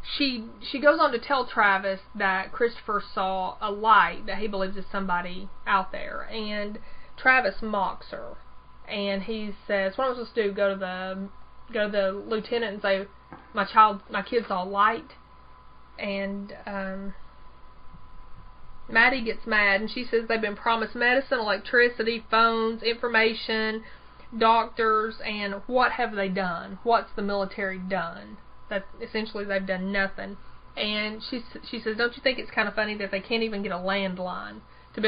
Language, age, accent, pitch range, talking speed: English, 30-49, American, 195-230 Hz, 165 wpm